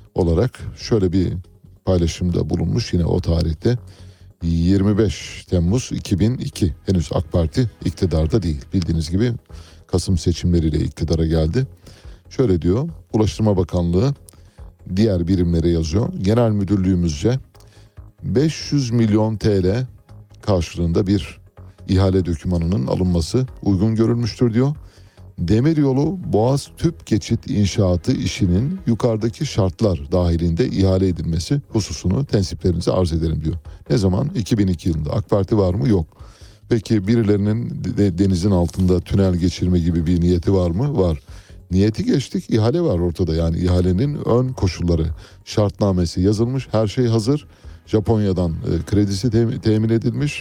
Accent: native